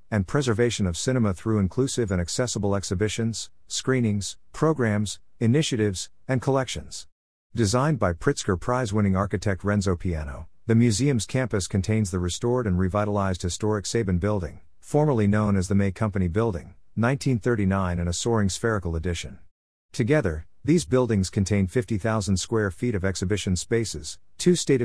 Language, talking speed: English, 140 wpm